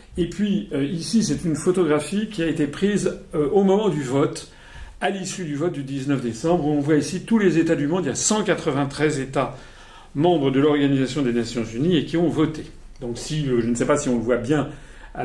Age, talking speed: 40-59, 220 wpm